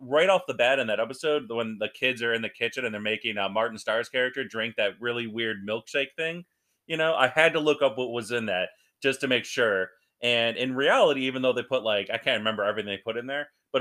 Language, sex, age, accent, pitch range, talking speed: English, male, 30-49, American, 115-155 Hz, 255 wpm